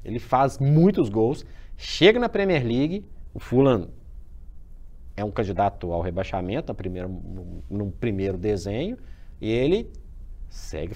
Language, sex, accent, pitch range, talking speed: Portuguese, male, Brazilian, 80-135 Hz, 125 wpm